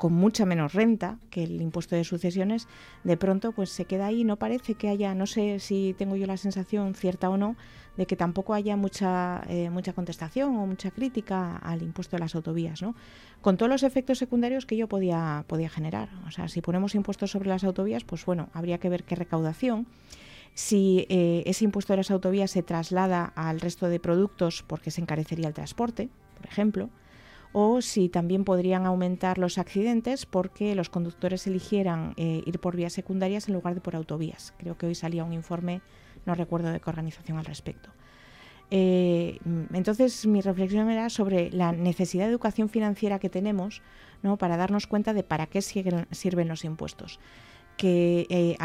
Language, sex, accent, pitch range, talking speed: Spanish, female, Spanish, 170-205 Hz, 185 wpm